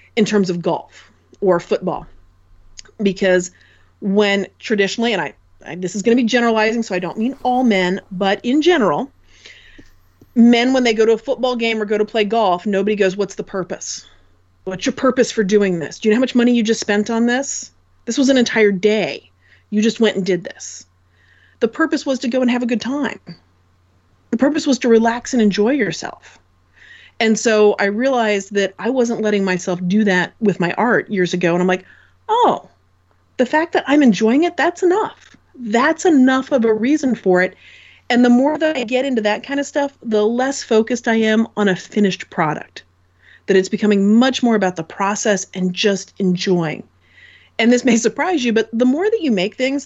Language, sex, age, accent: English, female, 30-49, American